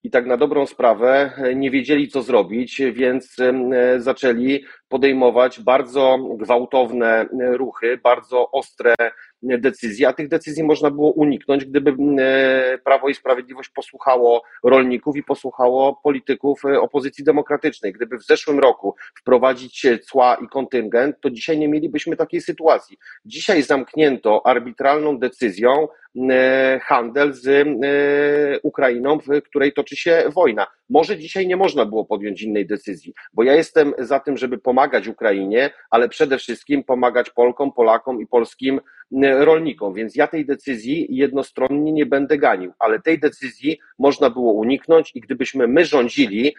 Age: 40-59